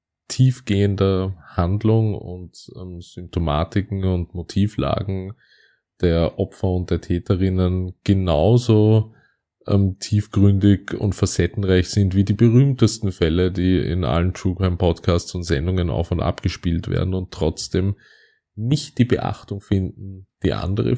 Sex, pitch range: male, 85-100 Hz